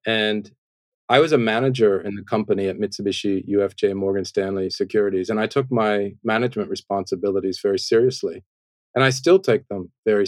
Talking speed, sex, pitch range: 165 wpm, male, 100-120 Hz